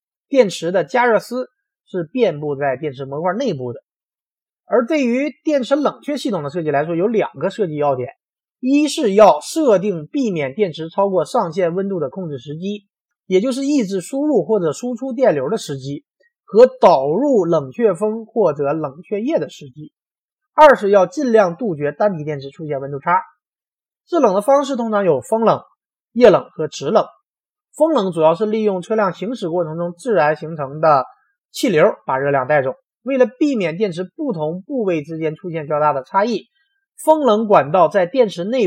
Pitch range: 155-255 Hz